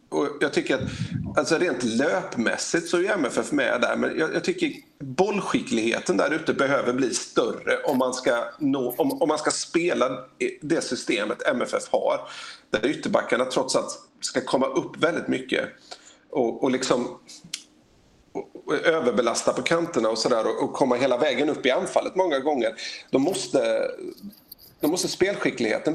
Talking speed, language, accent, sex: 160 wpm, Swedish, native, male